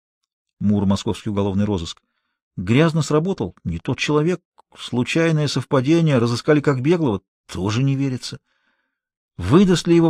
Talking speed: 120 wpm